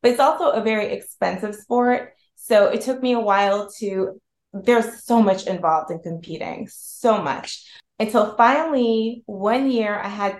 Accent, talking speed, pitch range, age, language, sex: American, 160 wpm, 195-240 Hz, 20-39, English, female